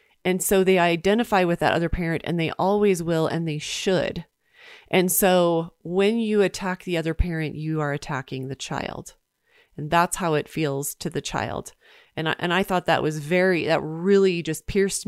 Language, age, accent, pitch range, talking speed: English, 30-49, American, 155-185 Hz, 185 wpm